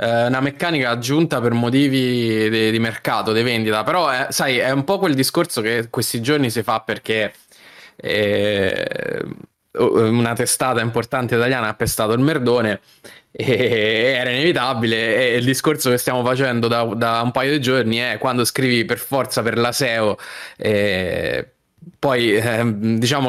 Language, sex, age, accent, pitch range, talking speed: Italian, male, 20-39, native, 110-135 Hz, 150 wpm